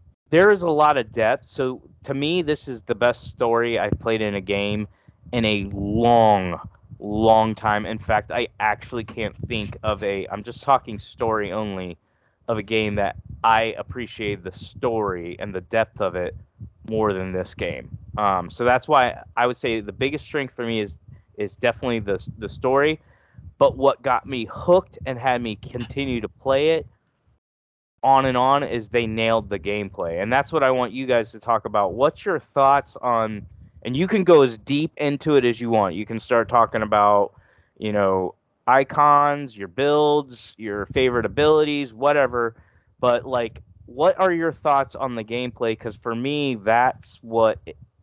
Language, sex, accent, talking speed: English, male, American, 180 wpm